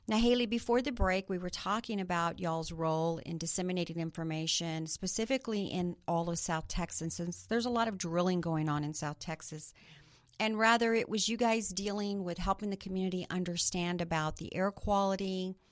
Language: English